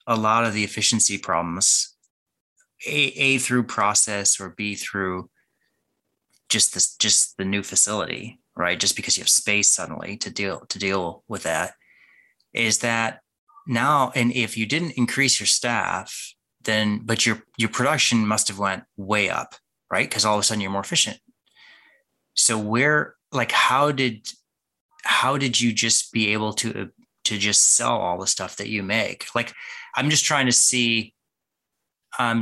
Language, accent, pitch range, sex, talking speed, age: English, American, 105-130 Hz, male, 165 wpm, 30-49